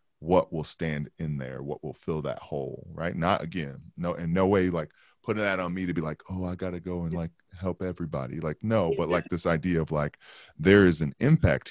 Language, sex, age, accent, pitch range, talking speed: English, male, 20-39, American, 75-85 Hz, 235 wpm